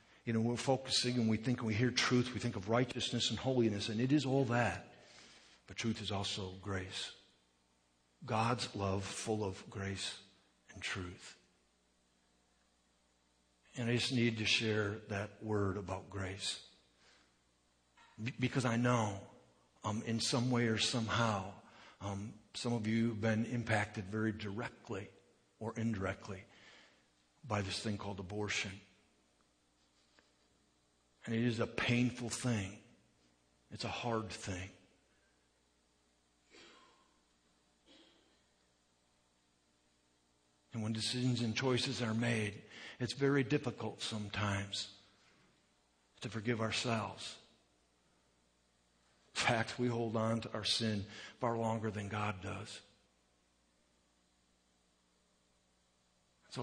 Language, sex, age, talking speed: English, male, 60-79, 115 wpm